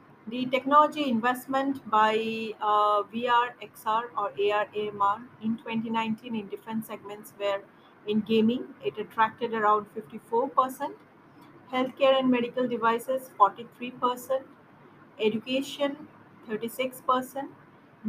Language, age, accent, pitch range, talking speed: English, 40-59, Indian, 220-270 Hz, 95 wpm